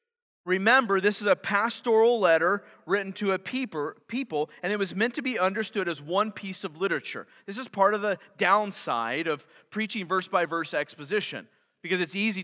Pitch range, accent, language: 170-215 Hz, American, English